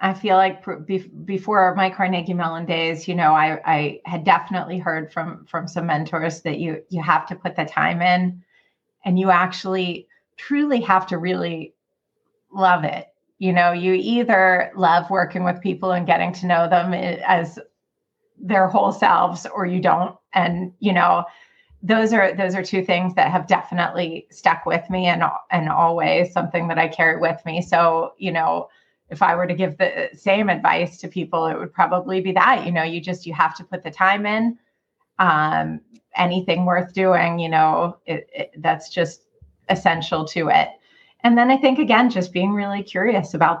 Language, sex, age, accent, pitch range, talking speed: English, female, 30-49, American, 170-190 Hz, 180 wpm